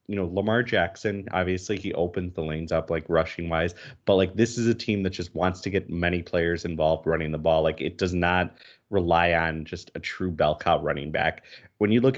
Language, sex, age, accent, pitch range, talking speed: English, male, 30-49, American, 85-105 Hz, 225 wpm